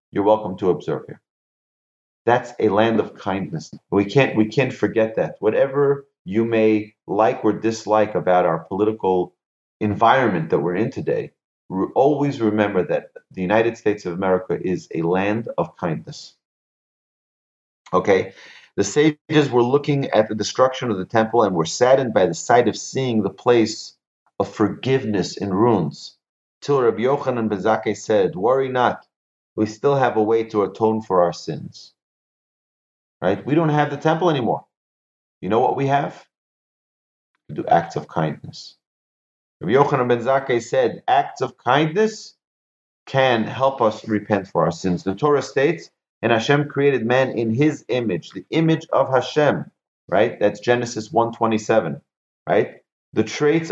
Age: 30-49